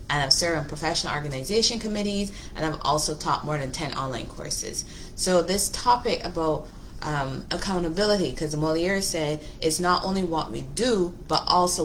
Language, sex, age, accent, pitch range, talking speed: English, female, 20-39, American, 150-180 Hz, 165 wpm